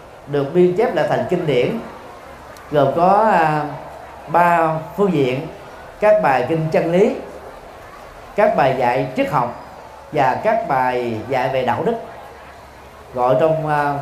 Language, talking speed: Vietnamese, 140 wpm